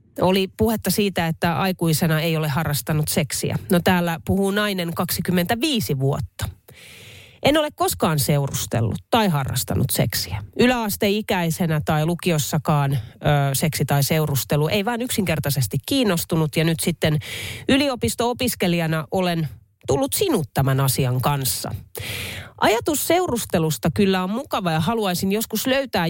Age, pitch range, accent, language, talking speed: 30-49, 135-205 Hz, native, Finnish, 115 wpm